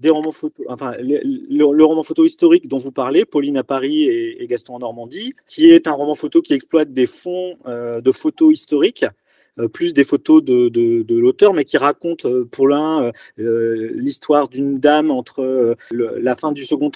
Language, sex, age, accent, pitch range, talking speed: French, male, 40-59, French, 130-185 Hz, 210 wpm